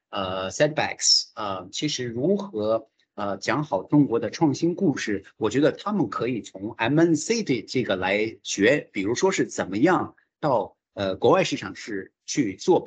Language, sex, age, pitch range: English, male, 50-69, 110-175 Hz